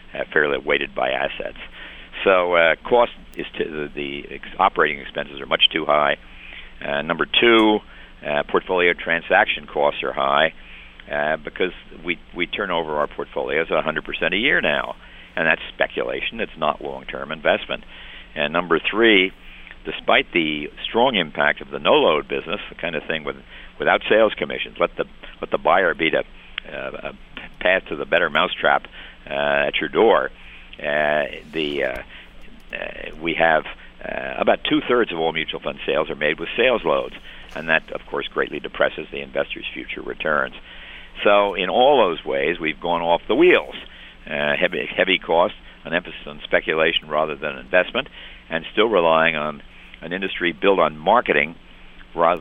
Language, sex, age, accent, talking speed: English, male, 50-69, American, 165 wpm